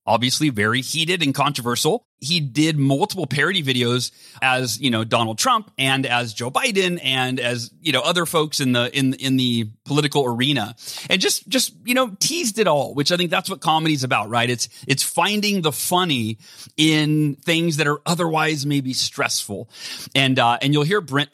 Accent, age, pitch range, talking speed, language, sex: American, 30-49, 120-155 Hz, 190 wpm, English, male